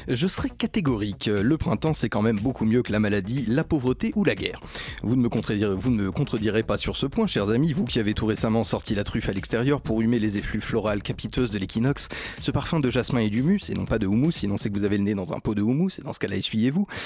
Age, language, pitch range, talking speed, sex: 30-49, French, 110-155 Hz, 270 wpm, male